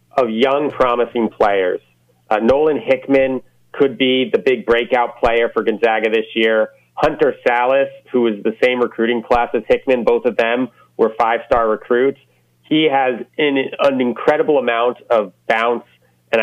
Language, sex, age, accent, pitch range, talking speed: English, male, 30-49, American, 110-130 Hz, 155 wpm